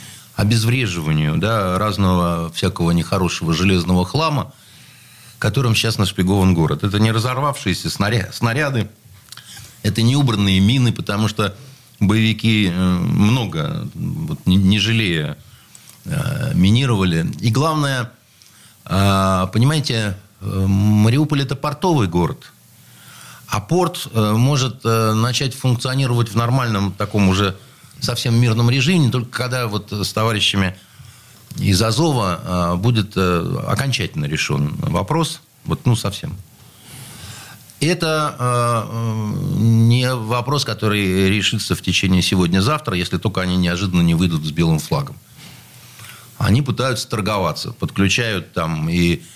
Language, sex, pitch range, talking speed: Russian, male, 95-125 Hz, 105 wpm